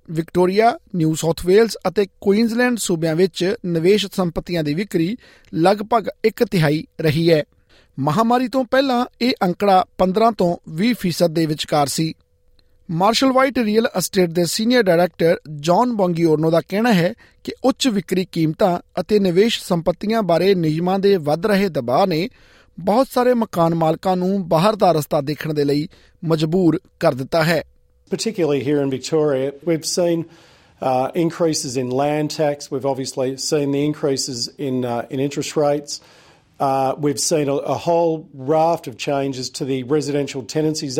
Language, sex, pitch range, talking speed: Punjabi, male, 145-190 Hz, 140 wpm